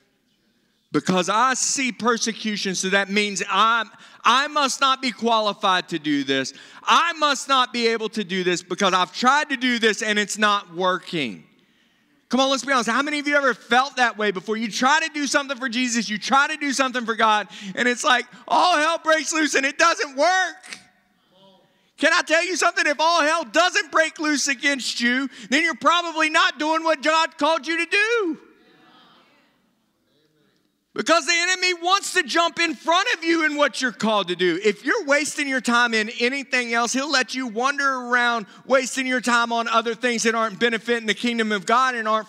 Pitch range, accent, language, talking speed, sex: 215-300 Hz, American, English, 200 wpm, male